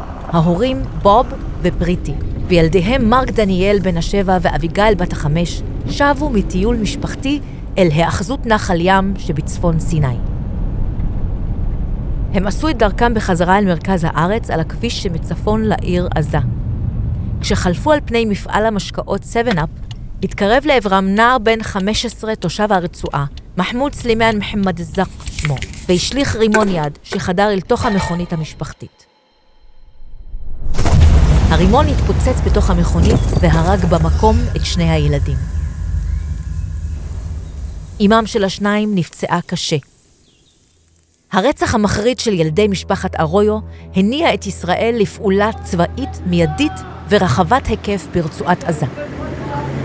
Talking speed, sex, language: 105 wpm, female, Hebrew